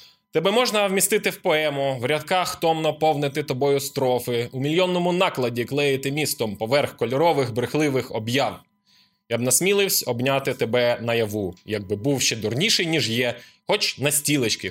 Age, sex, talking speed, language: 20-39, male, 145 wpm, Ukrainian